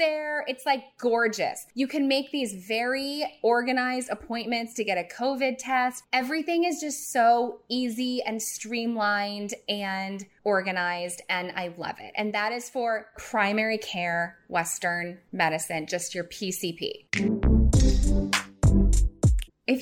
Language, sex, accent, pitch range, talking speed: English, female, American, 170-245 Hz, 120 wpm